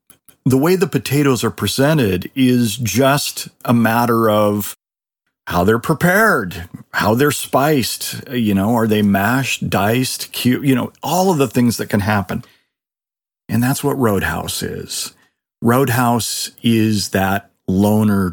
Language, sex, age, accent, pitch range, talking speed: English, male, 40-59, American, 95-130 Hz, 140 wpm